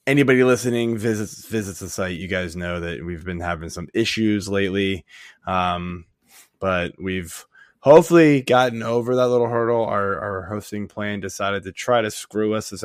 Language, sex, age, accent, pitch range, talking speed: English, male, 20-39, American, 95-115 Hz, 170 wpm